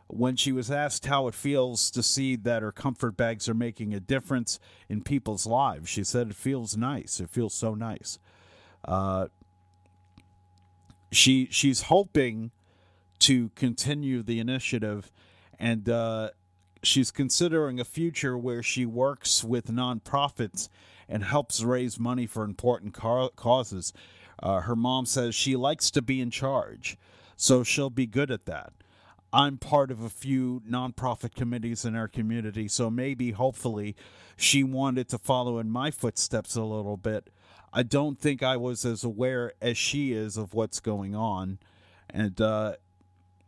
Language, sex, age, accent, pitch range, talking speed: English, male, 40-59, American, 100-125 Hz, 155 wpm